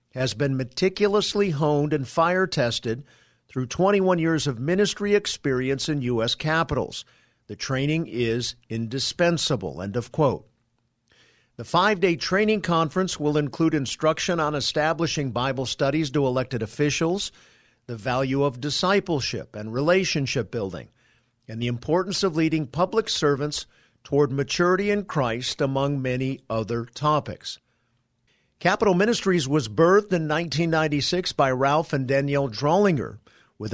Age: 50-69